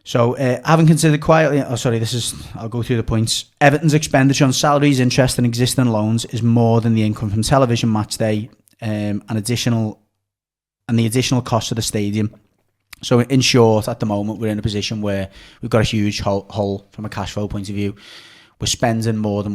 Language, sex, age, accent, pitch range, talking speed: English, male, 20-39, British, 105-120 Hz, 210 wpm